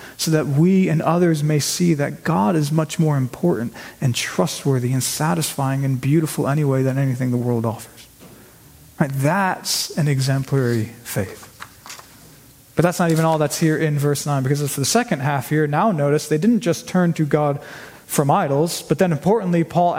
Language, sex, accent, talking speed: English, male, American, 175 wpm